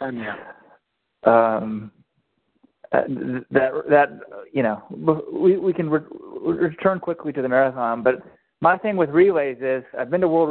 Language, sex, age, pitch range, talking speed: English, male, 20-39, 120-155 Hz, 145 wpm